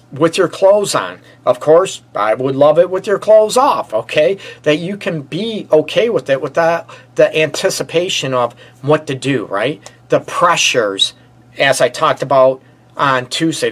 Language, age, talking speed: English, 40-59, 165 wpm